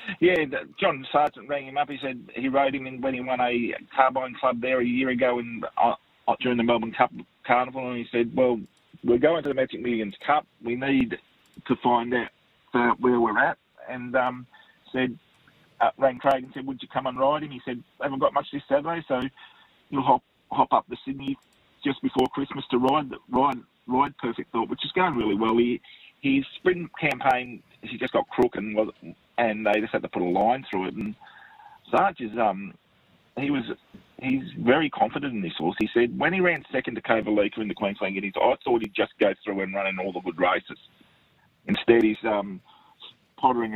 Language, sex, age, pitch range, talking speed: English, male, 40-59, 110-135 Hz, 210 wpm